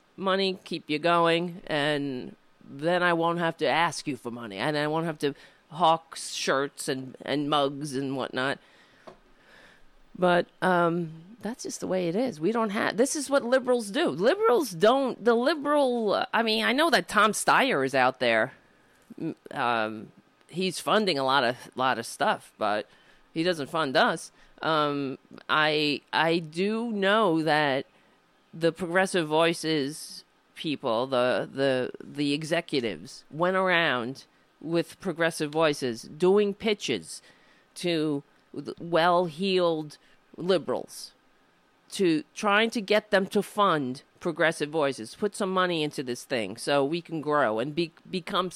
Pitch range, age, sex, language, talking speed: 150-205 Hz, 40-59, female, English, 145 wpm